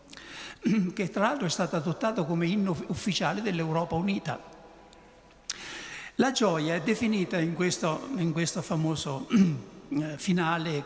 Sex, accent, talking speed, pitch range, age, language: male, native, 115 wpm, 165-230 Hz, 60-79, Italian